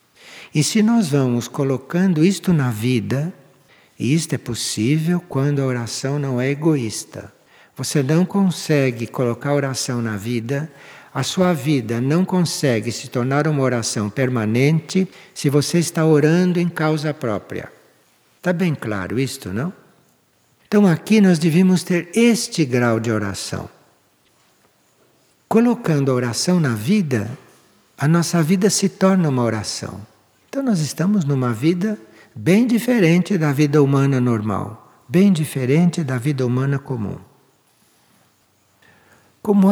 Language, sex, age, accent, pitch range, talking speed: Portuguese, male, 60-79, Brazilian, 125-175 Hz, 130 wpm